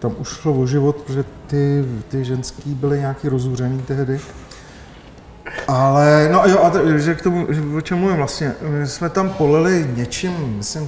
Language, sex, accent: Czech, male, native